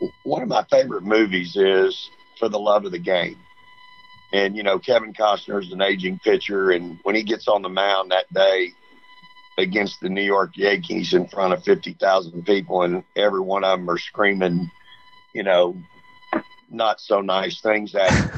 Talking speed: 180 wpm